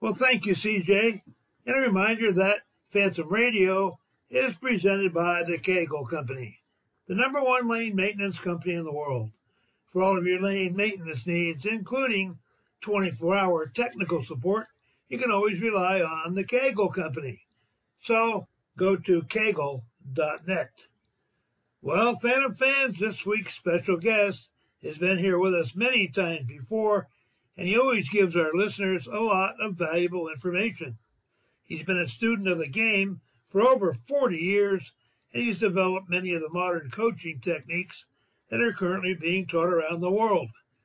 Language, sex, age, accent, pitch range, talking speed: English, male, 60-79, American, 165-210 Hz, 150 wpm